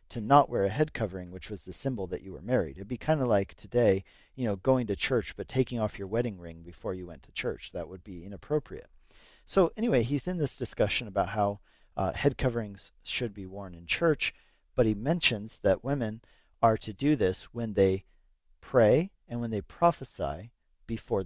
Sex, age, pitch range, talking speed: male, 40-59, 100-140 Hz, 205 wpm